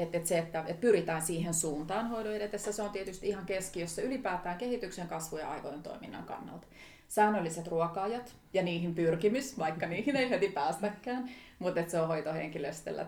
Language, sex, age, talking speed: Finnish, female, 30-49, 165 wpm